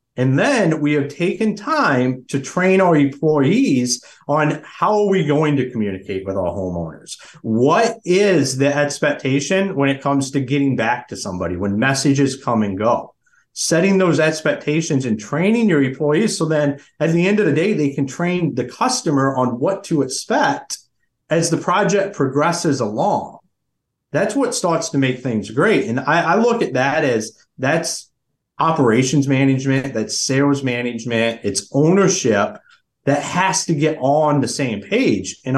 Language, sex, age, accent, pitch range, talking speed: English, male, 30-49, American, 125-165 Hz, 165 wpm